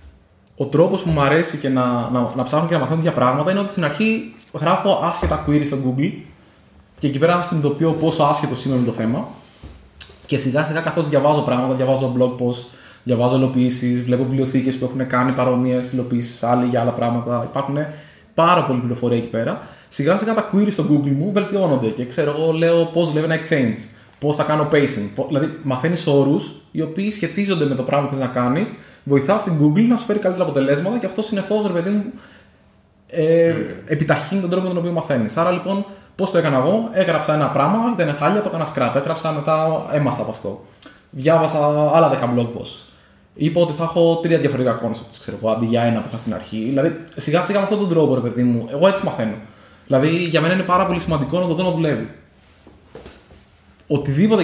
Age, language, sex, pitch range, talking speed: 20-39, Greek, male, 125-170 Hz, 195 wpm